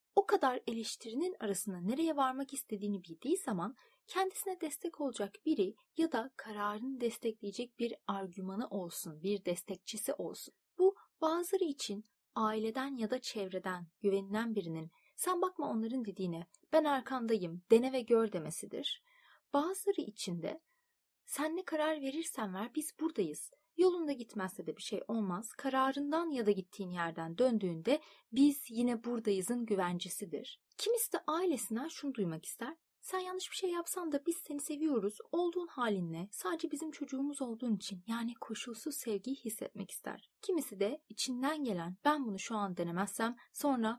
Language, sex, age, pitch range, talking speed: Turkish, female, 30-49, 205-310 Hz, 145 wpm